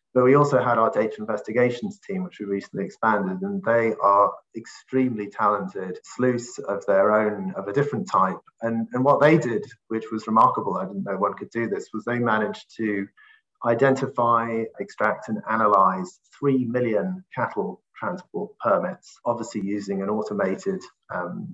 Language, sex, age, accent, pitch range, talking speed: English, male, 30-49, British, 105-145 Hz, 160 wpm